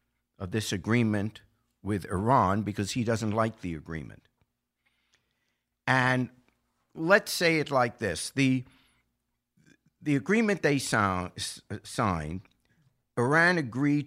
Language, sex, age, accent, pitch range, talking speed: English, male, 60-79, American, 100-140 Hz, 100 wpm